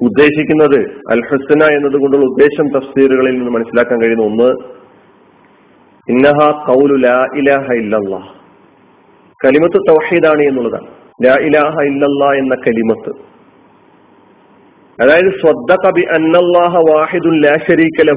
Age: 40-59